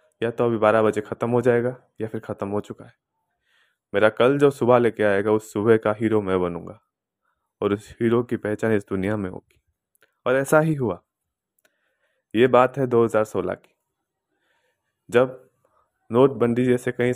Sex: male